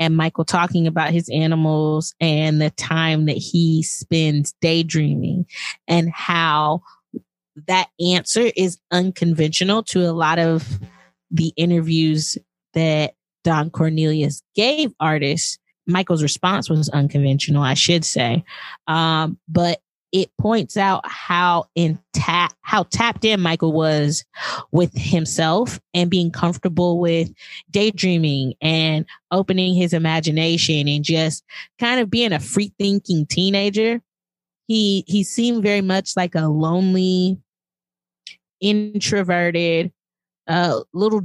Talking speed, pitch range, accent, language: 120 wpm, 155-185 Hz, American, English